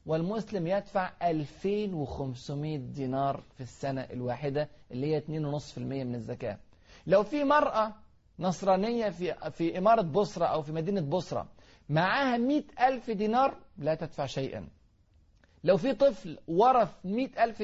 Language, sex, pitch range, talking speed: Arabic, male, 145-220 Hz, 120 wpm